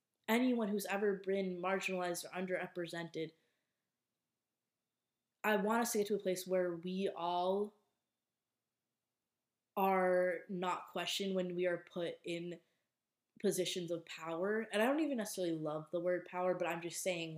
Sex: female